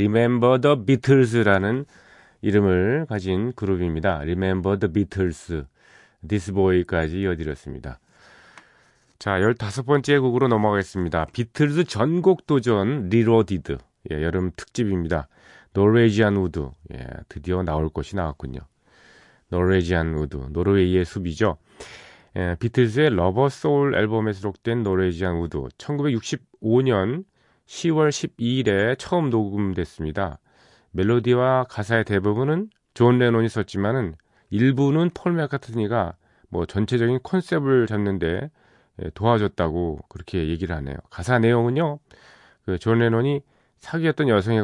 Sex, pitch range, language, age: male, 90-125 Hz, Korean, 40-59